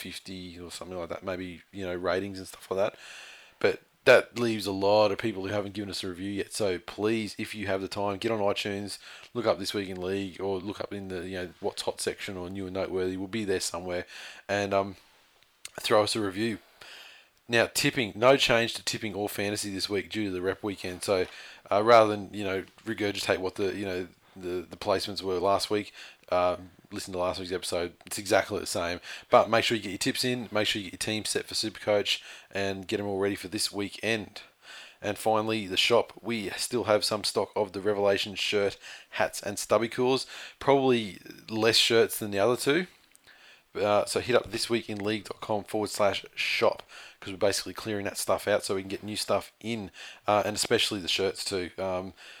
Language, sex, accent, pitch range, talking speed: English, male, Australian, 95-110 Hz, 215 wpm